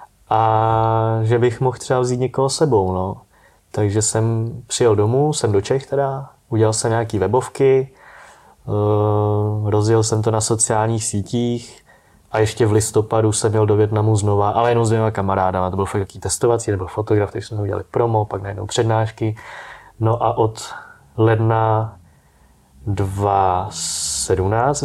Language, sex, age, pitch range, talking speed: Czech, male, 20-39, 105-125 Hz, 140 wpm